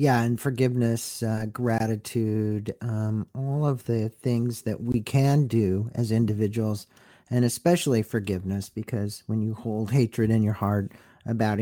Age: 50-69